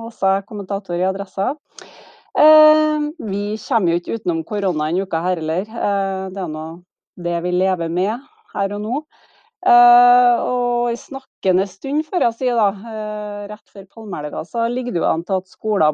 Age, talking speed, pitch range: 30-49, 175 wpm, 175-225 Hz